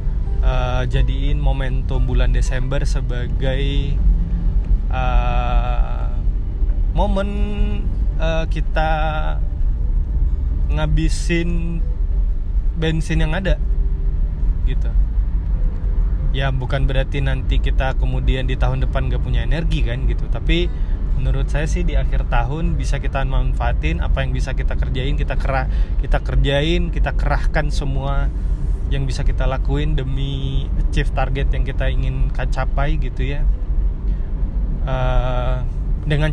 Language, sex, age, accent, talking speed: Indonesian, male, 20-39, native, 110 wpm